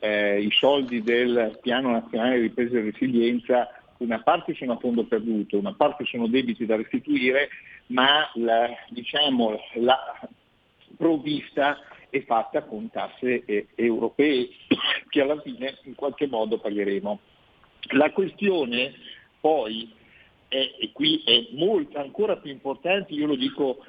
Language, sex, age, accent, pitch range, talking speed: Italian, male, 50-69, native, 120-165 Hz, 135 wpm